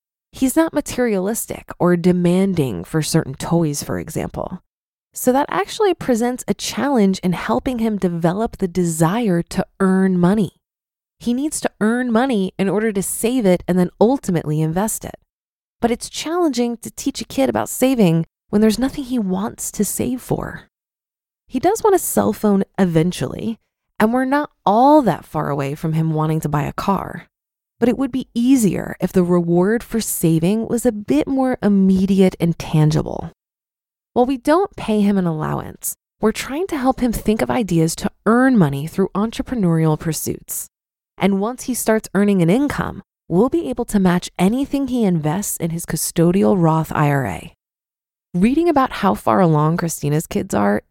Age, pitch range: 20-39, 175-245 Hz